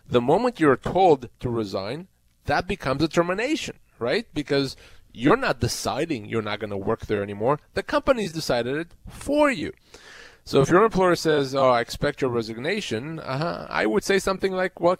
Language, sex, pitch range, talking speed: English, male, 115-170 Hz, 175 wpm